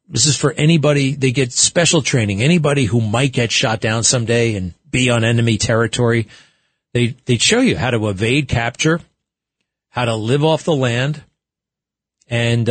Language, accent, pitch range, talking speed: English, American, 105-130 Hz, 165 wpm